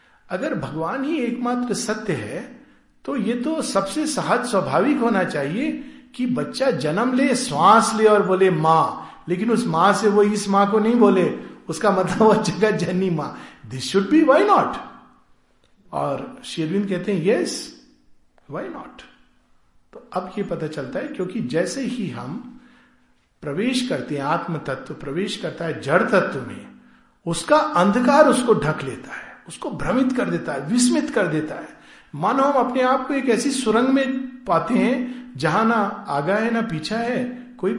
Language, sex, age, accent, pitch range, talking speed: Hindi, male, 50-69, native, 180-250 Hz, 170 wpm